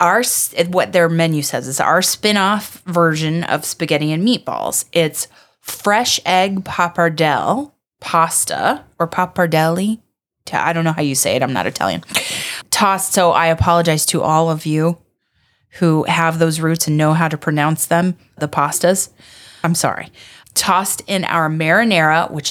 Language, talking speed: English, 150 wpm